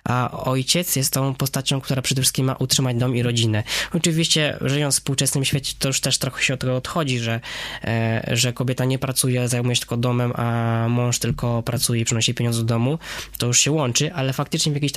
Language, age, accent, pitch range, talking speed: Polish, 20-39, native, 125-145 Hz, 210 wpm